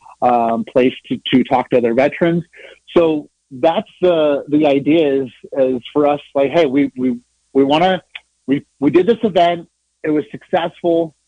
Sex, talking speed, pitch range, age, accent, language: male, 170 wpm, 135-165 Hz, 30-49, American, English